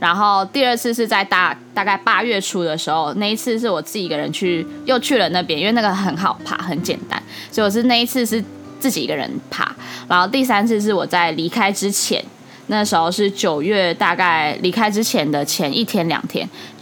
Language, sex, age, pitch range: Chinese, female, 10-29, 175-235 Hz